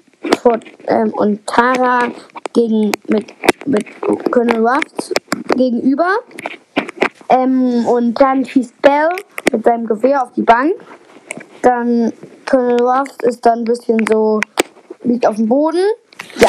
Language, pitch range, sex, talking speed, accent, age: German, 225-285 Hz, female, 120 wpm, German, 10-29